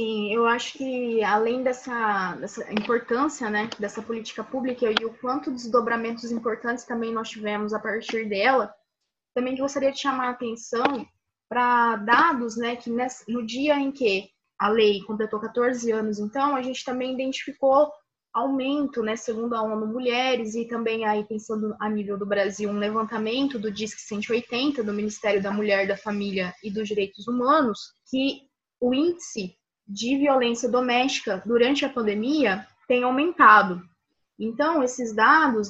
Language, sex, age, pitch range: Portuguese, female, 20-39, 215-255 Hz